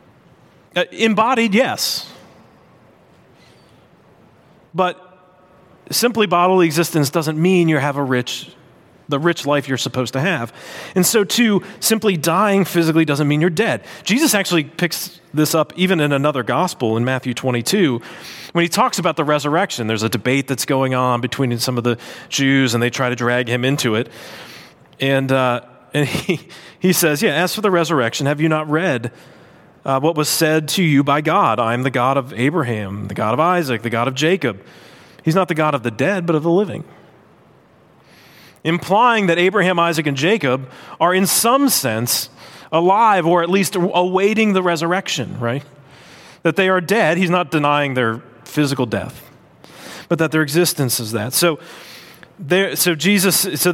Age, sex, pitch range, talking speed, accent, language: 30-49, male, 135-185 Hz, 165 wpm, American, English